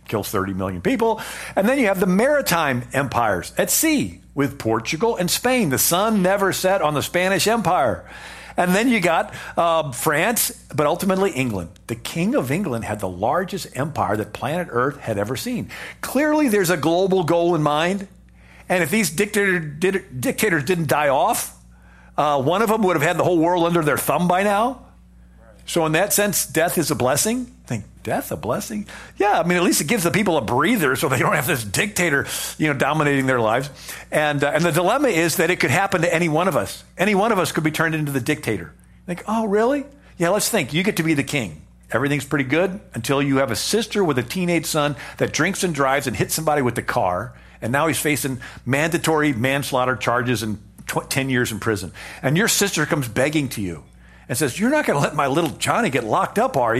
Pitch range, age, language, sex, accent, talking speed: 130-195 Hz, 50-69, English, male, American, 220 wpm